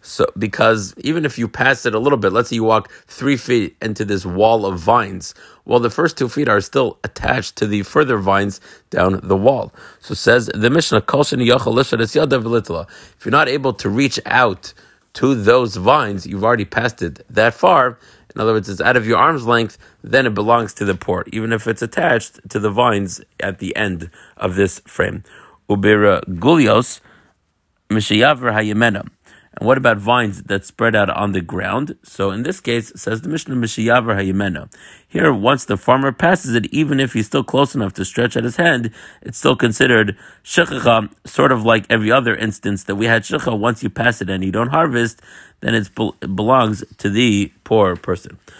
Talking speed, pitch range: 185 wpm, 100-125 Hz